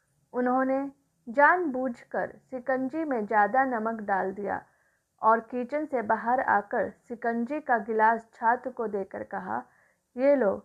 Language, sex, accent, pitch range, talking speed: Hindi, female, native, 230-290 Hz, 130 wpm